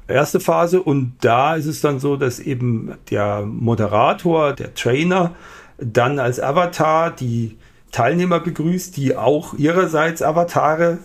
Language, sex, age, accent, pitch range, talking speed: German, male, 50-69, German, 120-150 Hz, 130 wpm